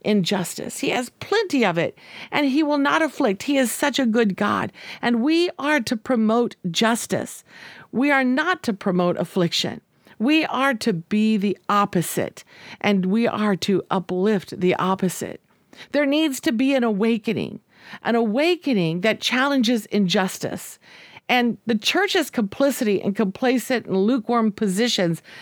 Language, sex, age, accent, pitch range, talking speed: English, female, 50-69, American, 195-270 Hz, 145 wpm